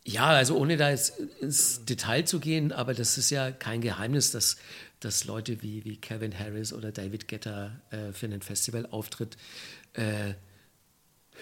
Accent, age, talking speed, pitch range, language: German, 50-69, 160 wpm, 115-140 Hz, German